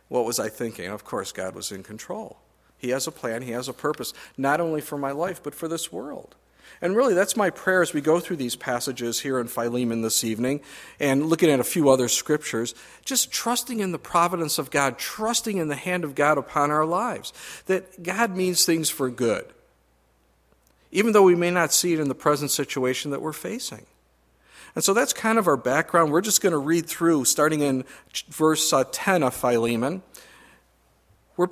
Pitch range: 130-180 Hz